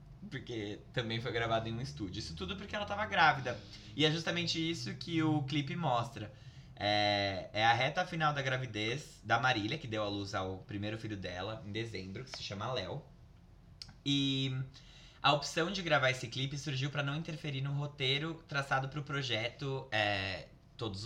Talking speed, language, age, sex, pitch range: 175 wpm, Portuguese, 20-39, male, 115-150 Hz